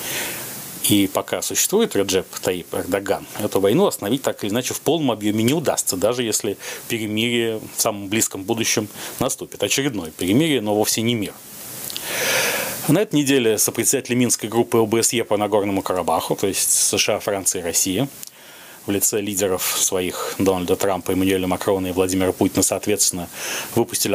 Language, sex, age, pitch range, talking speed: Russian, male, 30-49, 100-125 Hz, 150 wpm